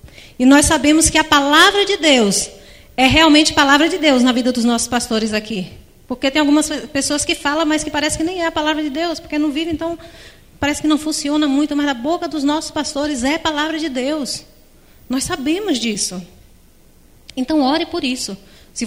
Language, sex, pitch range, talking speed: Portuguese, female, 245-315 Hz, 195 wpm